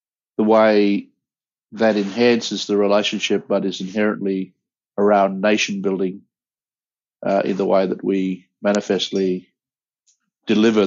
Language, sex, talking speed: English, male, 105 wpm